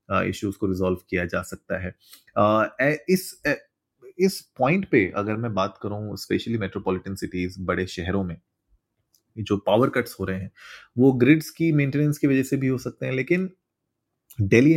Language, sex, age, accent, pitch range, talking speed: Hindi, male, 30-49, native, 95-125 Hz, 175 wpm